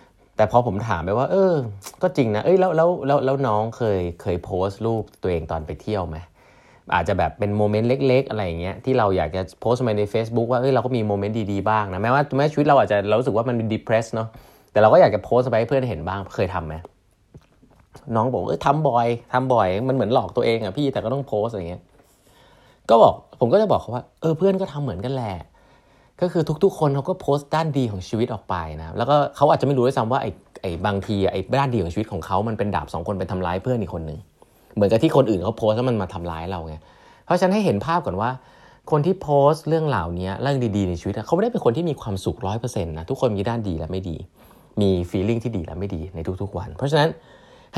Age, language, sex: 30-49, Thai, male